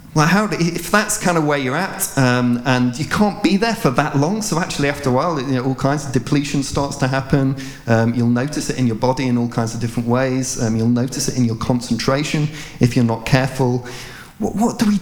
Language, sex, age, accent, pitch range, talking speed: English, male, 30-49, British, 120-145 Hz, 230 wpm